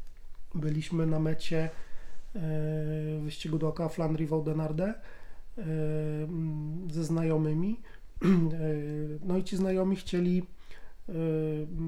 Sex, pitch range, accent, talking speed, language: male, 160-170 Hz, native, 80 wpm, Polish